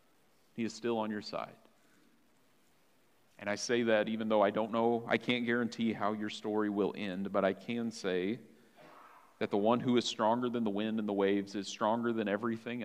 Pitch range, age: 105-125 Hz, 40-59